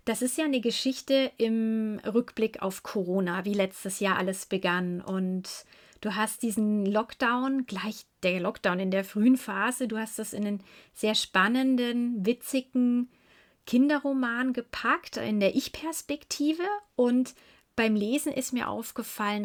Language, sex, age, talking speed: German, female, 30-49, 140 wpm